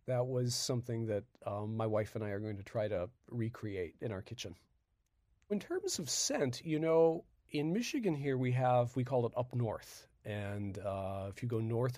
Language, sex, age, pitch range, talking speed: English, male, 40-59, 105-125 Hz, 200 wpm